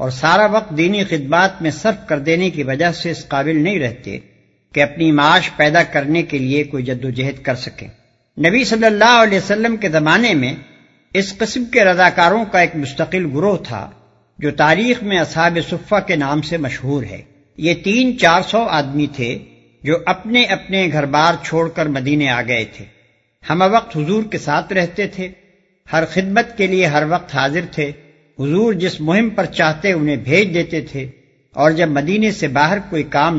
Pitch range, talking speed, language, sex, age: 145-190 Hz, 185 wpm, Urdu, male, 60-79